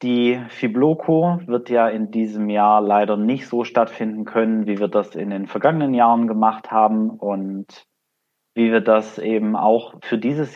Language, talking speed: German, 165 wpm